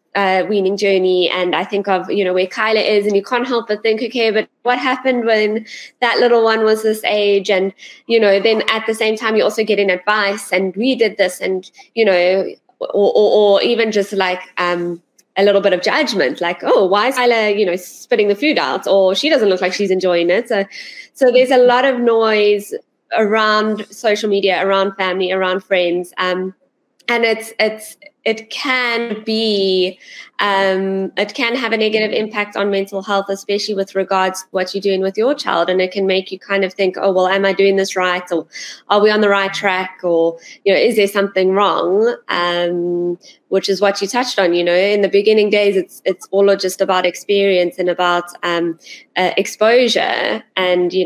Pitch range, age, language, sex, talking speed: 185-220 Hz, 20-39, English, female, 205 wpm